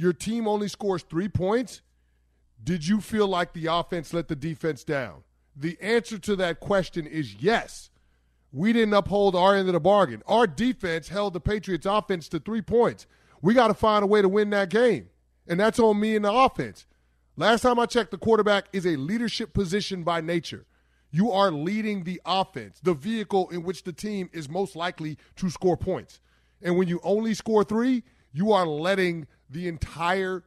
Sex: male